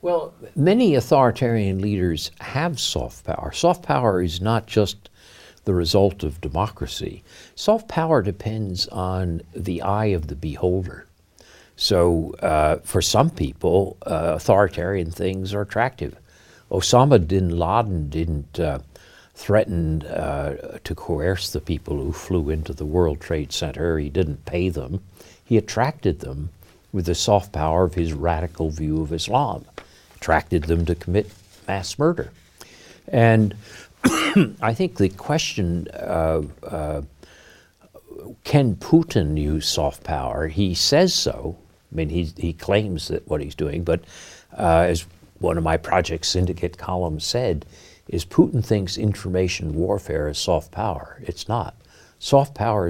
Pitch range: 80-105 Hz